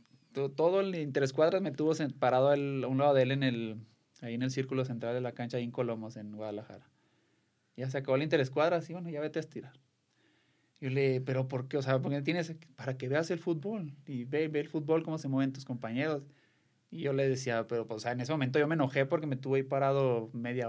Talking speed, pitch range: 245 wpm, 120-145 Hz